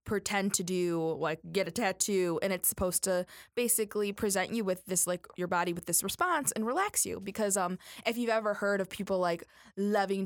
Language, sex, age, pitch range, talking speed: English, female, 20-39, 175-205 Hz, 205 wpm